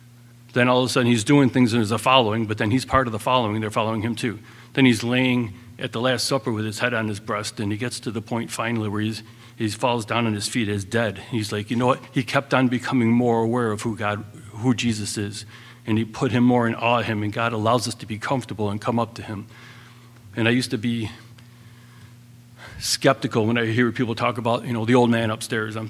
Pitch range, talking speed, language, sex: 110-125 Hz, 255 wpm, English, male